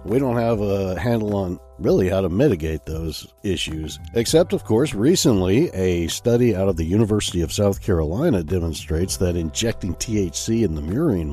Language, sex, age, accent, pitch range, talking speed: English, male, 60-79, American, 85-115 Hz, 170 wpm